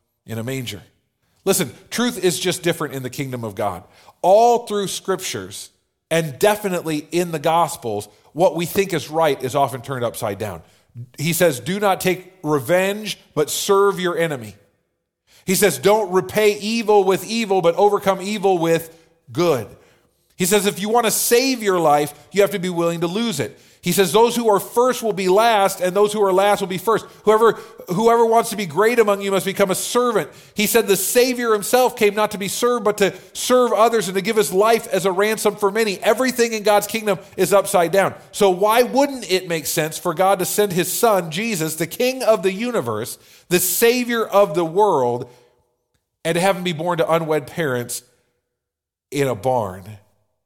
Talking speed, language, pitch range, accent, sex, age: 195 wpm, English, 150-210 Hz, American, male, 40-59